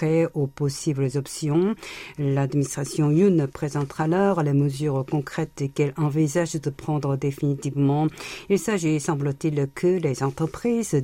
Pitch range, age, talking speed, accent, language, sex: 140-165 Hz, 50-69, 115 wpm, French, French, female